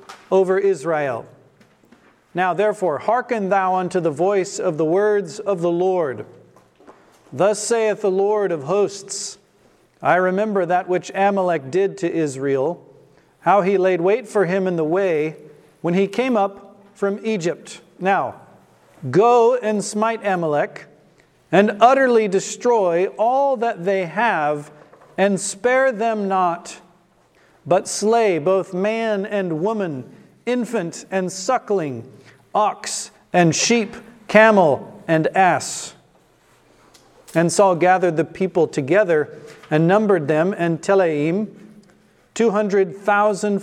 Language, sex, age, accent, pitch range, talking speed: English, male, 50-69, American, 175-210 Hz, 120 wpm